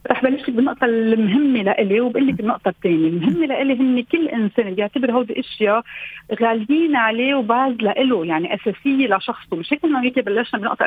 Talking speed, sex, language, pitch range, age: 160 wpm, female, Arabic, 210-275 Hz, 40-59